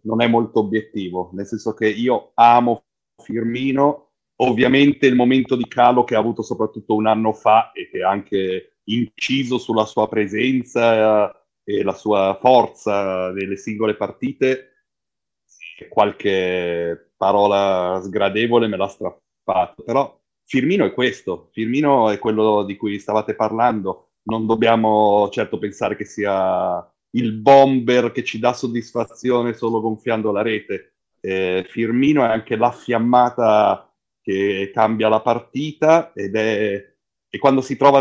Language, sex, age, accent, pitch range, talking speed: Italian, male, 30-49, native, 105-125 Hz, 135 wpm